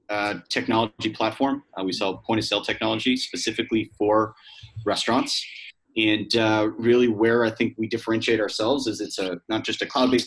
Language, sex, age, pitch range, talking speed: English, male, 30-49, 100-120 Hz, 160 wpm